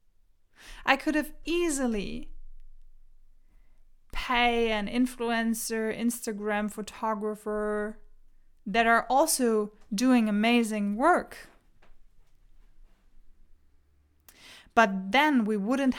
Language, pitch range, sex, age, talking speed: English, 205-245 Hz, female, 20-39, 70 wpm